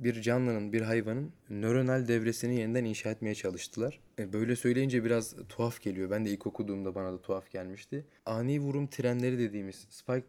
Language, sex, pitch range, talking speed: Turkish, male, 110-130 Hz, 165 wpm